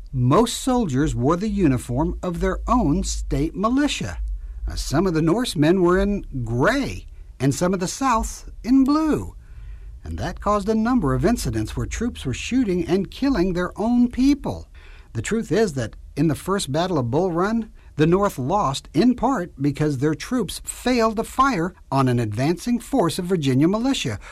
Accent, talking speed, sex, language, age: American, 170 wpm, male, English, 60-79